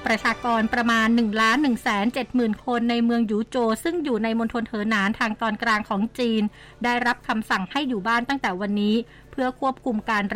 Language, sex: Thai, female